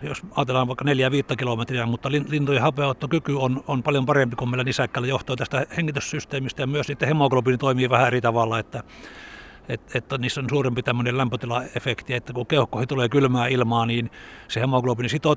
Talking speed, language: 170 wpm, Finnish